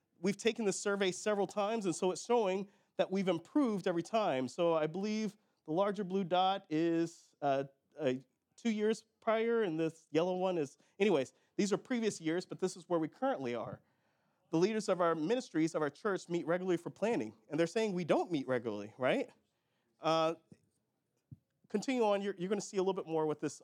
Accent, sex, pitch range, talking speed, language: American, male, 160-210 Hz, 200 wpm, English